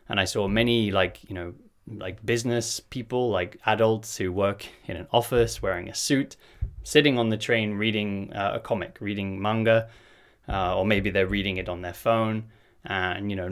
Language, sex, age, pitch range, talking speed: English, male, 20-39, 100-130 Hz, 185 wpm